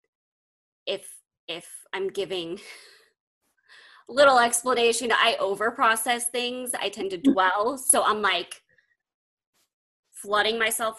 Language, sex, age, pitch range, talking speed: English, female, 20-39, 205-260 Hz, 100 wpm